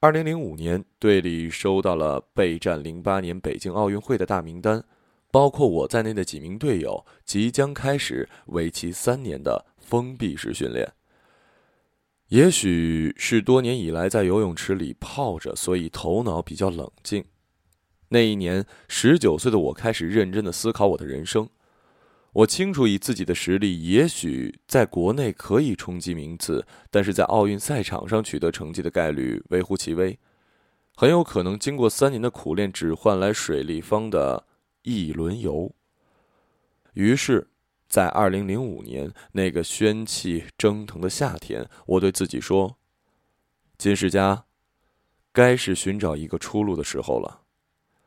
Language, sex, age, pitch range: Chinese, male, 20-39, 85-110 Hz